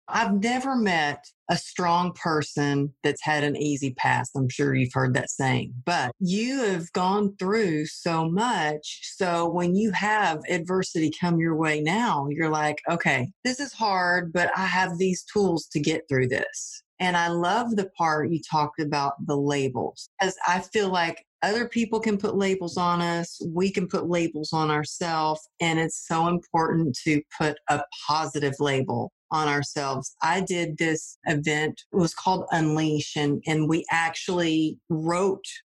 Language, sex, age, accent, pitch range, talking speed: English, female, 40-59, American, 150-180 Hz, 165 wpm